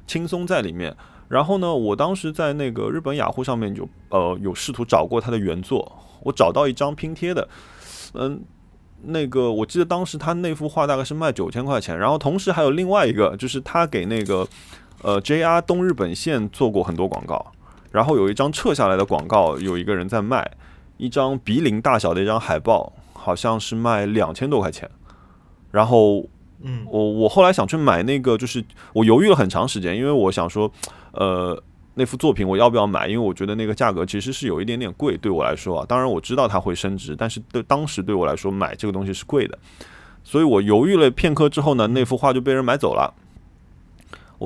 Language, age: Chinese, 20-39